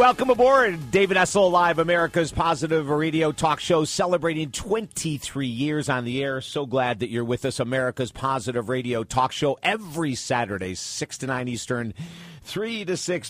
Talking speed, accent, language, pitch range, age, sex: 165 wpm, American, English, 120-160 Hz, 50-69, male